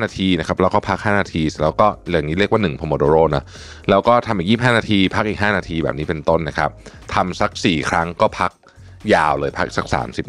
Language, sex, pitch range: Thai, male, 80-105 Hz